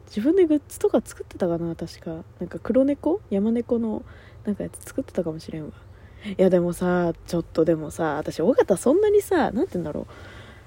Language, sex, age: Japanese, female, 20-39